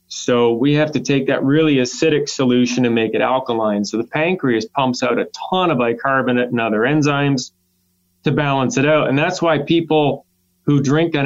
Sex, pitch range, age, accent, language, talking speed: male, 115-145 Hz, 30-49, American, English, 190 wpm